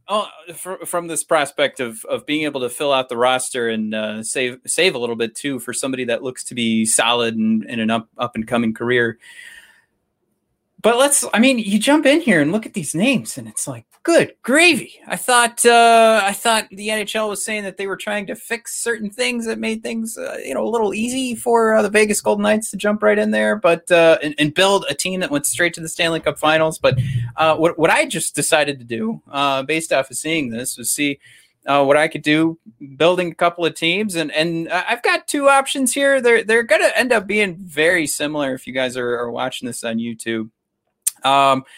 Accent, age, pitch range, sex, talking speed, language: American, 30-49, 130-210 Hz, male, 230 wpm, English